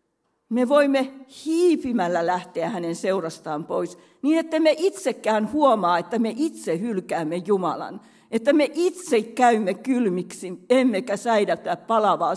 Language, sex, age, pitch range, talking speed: Finnish, female, 60-79, 210-300 Hz, 120 wpm